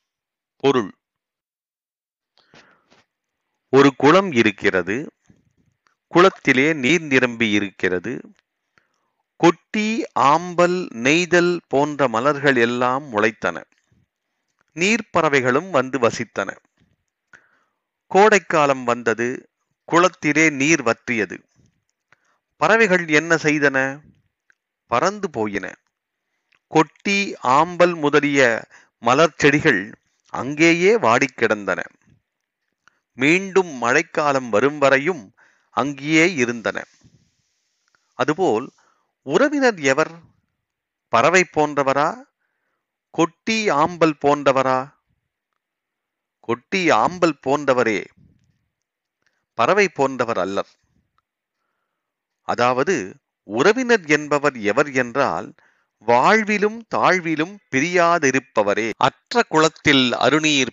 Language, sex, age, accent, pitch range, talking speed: Tamil, male, 40-59, native, 130-175 Hz, 60 wpm